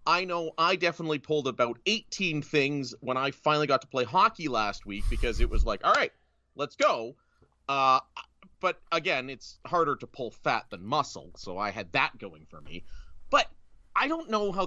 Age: 30-49